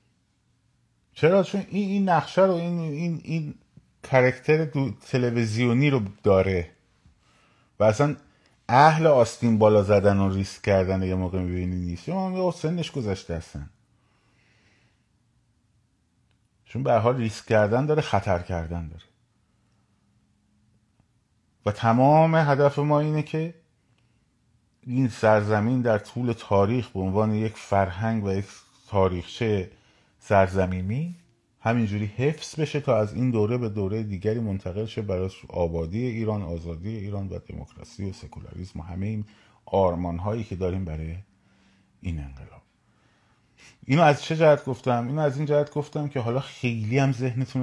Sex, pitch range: male, 95-125 Hz